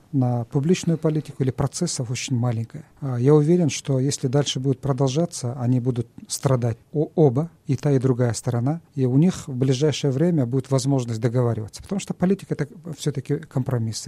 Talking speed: 170 wpm